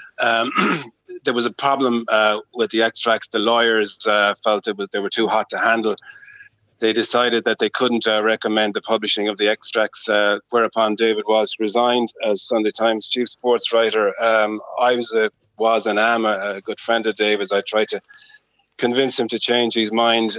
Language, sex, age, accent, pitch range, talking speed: English, male, 30-49, Irish, 110-130 Hz, 195 wpm